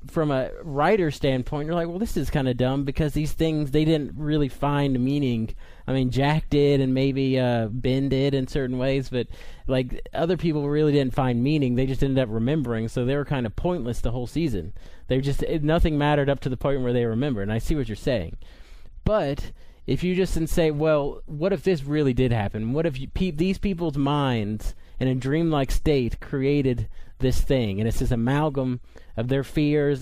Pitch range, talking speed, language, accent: 125-150 Hz, 210 wpm, English, American